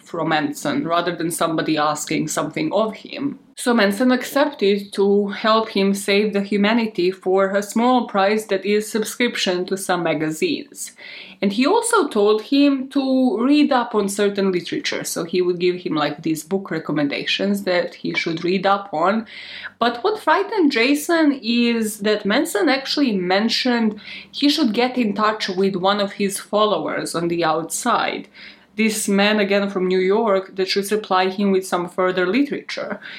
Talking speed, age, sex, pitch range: 165 wpm, 20-39, female, 180-225 Hz